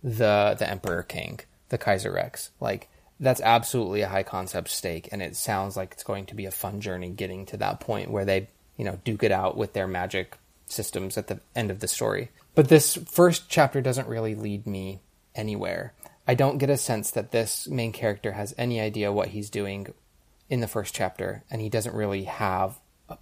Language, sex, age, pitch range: English, male, 20-39, 95-115 Hz